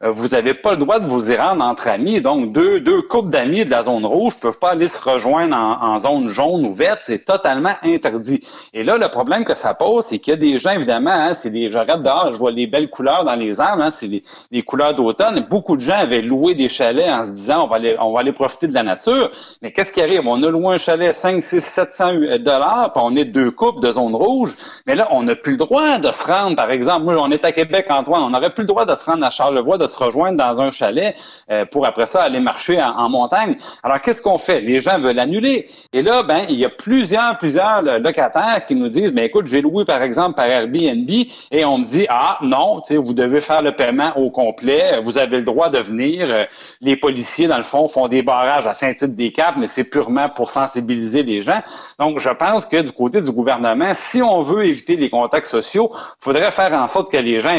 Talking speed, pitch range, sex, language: 250 wpm, 125-185 Hz, male, French